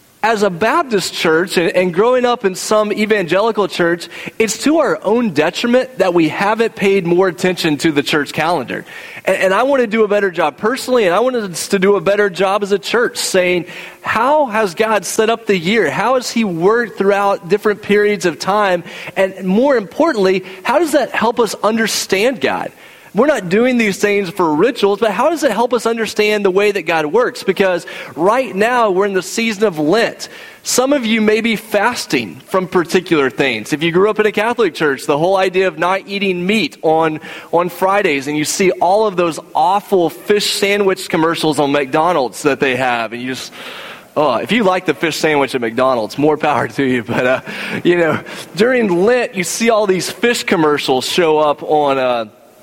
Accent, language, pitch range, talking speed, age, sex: American, English, 175-225 Hz, 205 wpm, 30-49, male